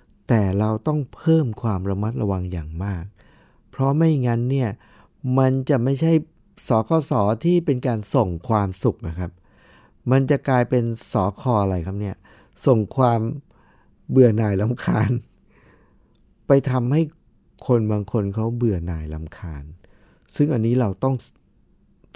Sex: male